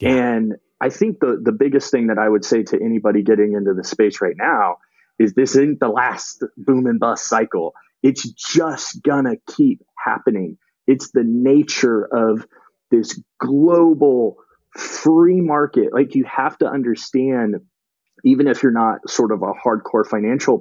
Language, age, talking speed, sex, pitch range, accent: English, 30-49, 165 wpm, male, 110-145 Hz, American